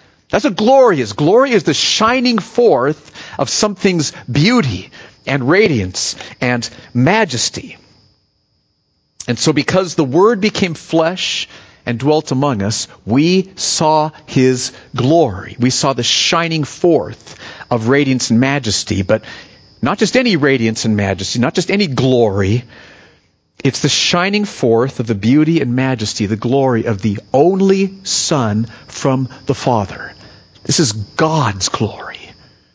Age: 50-69